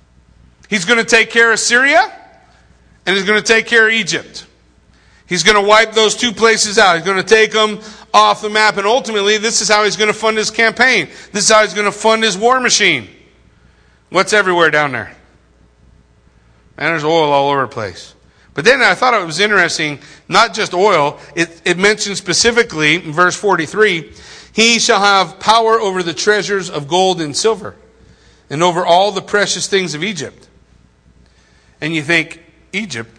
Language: English